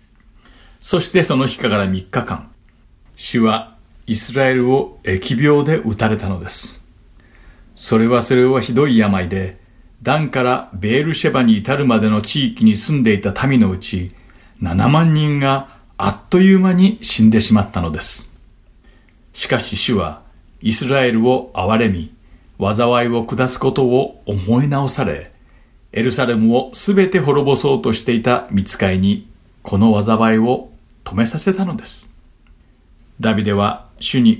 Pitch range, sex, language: 105-135 Hz, male, Japanese